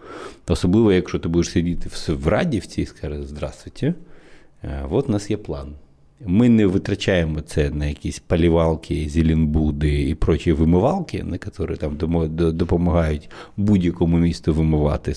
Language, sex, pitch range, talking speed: Ukrainian, male, 75-95 Hz, 130 wpm